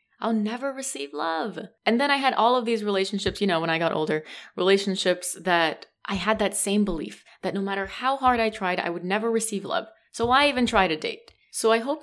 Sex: female